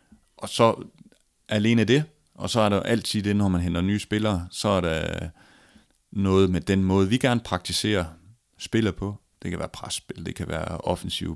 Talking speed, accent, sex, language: 180 wpm, native, male, Danish